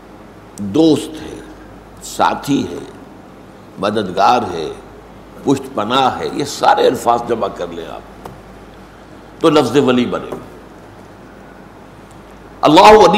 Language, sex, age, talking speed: Urdu, male, 60-79, 95 wpm